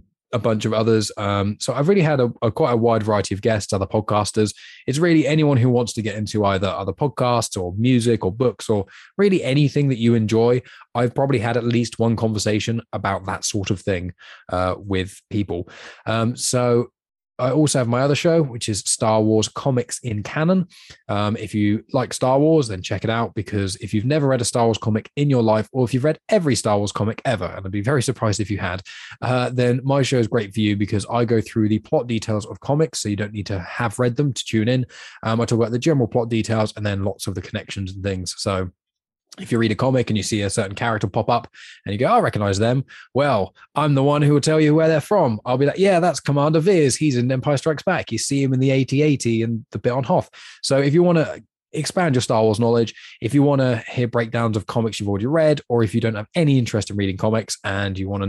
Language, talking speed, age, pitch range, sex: English, 250 wpm, 20-39, 105-130 Hz, male